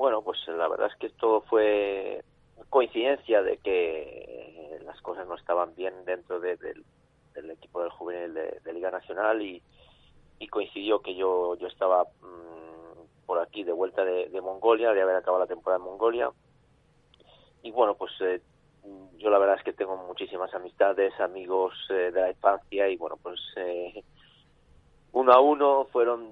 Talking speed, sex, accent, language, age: 175 wpm, male, Spanish, Spanish, 30-49